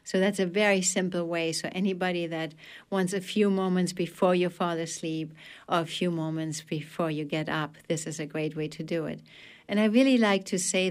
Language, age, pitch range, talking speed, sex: English, 60-79, 160-190 Hz, 215 wpm, female